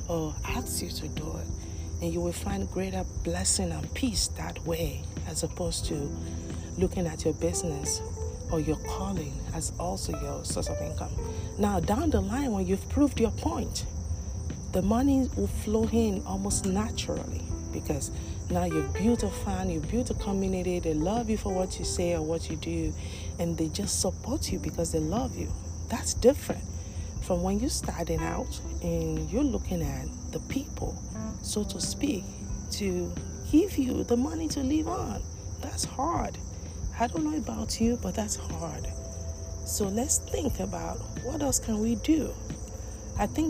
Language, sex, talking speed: English, female, 170 wpm